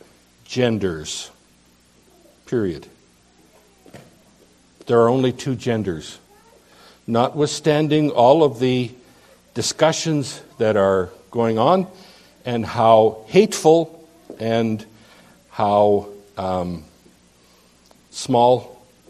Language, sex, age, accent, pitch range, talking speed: English, male, 60-79, American, 110-150 Hz, 70 wpm